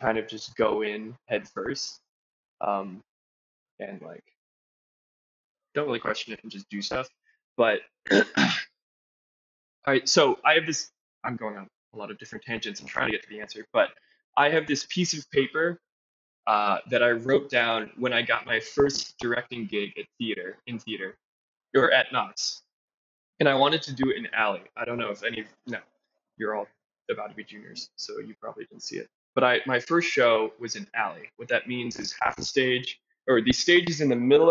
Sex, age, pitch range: male, 20-39, 110-155 Hz